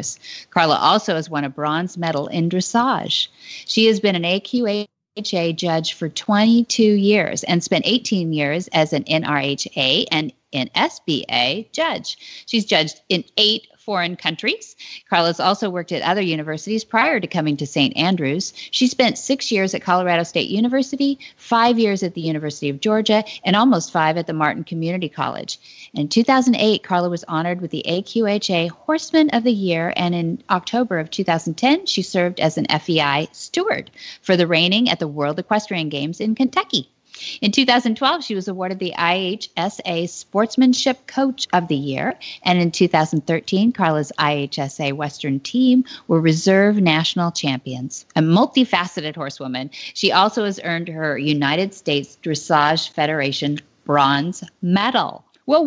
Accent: American